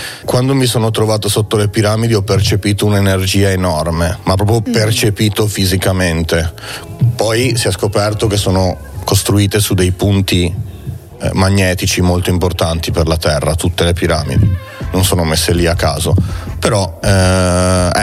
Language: Italian